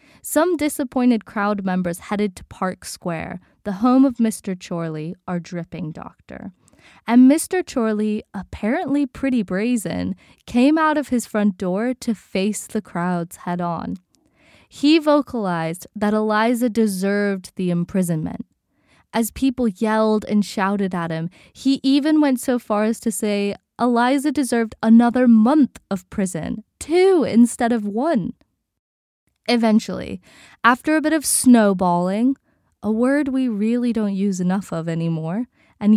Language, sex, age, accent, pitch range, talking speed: English, female, 20-39, American, 185-250 Hz, 135 wpm